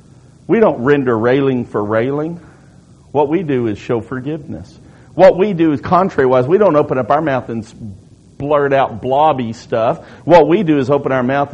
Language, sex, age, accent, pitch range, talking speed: English, male, 50-69, American, 115-150 Hz, 180 wpm